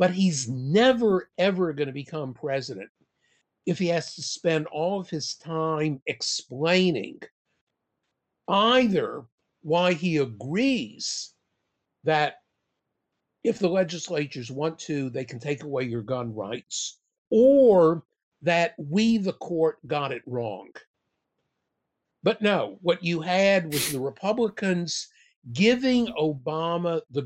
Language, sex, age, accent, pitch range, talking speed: English, male, 50-69, American, 145-190 Hz, 120 wpm